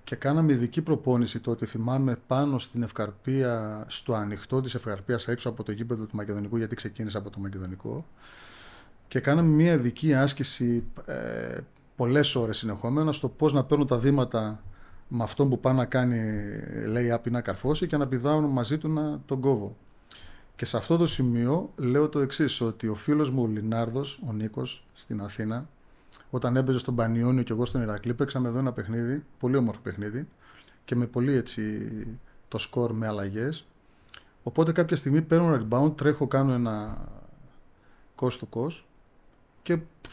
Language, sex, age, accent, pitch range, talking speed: Greek, male, 30-49, native, 115-140 Hz, 160 wpm